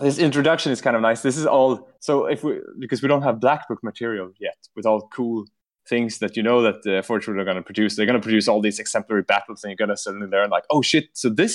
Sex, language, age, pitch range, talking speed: male, English, 20-39, 115-145 Hz, 280 wpm